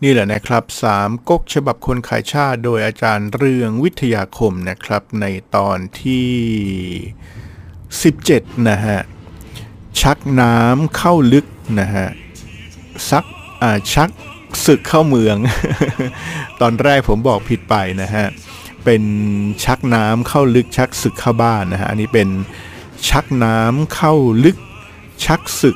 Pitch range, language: 100-125 Hz, Thai